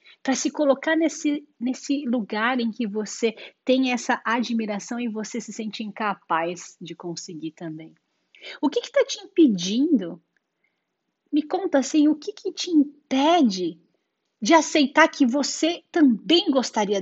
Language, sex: Portuguese, female